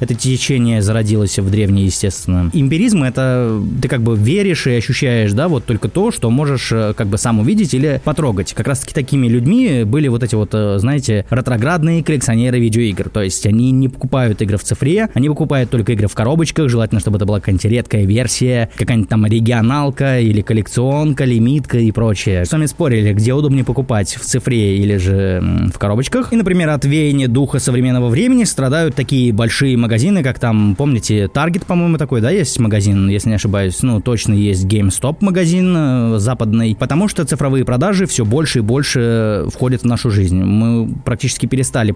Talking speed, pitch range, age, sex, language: 180 wpm, 110-140 Hz, 20-39, male, Russian